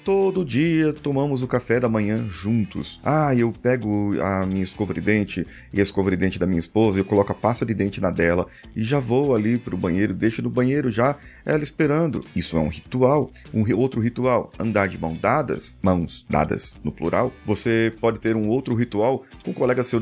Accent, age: Brazilian, 30-49